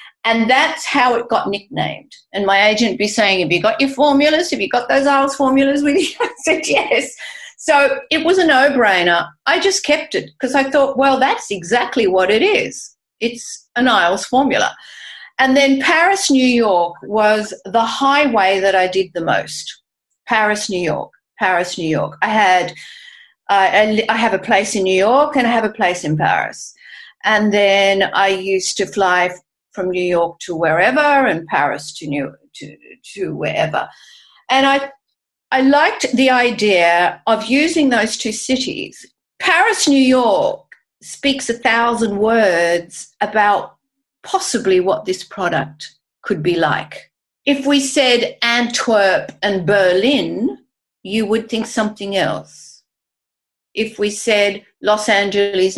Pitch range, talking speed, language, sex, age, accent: 195-275 Hz, 155 wpm, English, female, 40-59, Australian